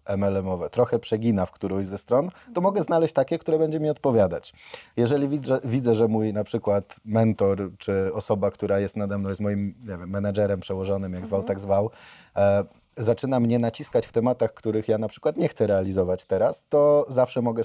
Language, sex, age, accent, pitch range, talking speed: Polish, male, 20-39, native, 100-120 Hz, 185 wpm